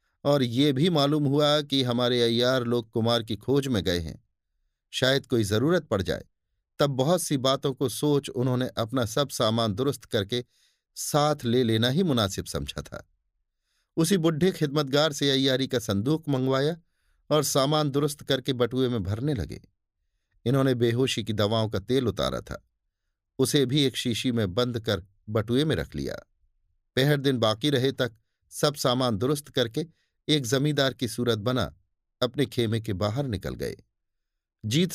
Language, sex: Hindi, male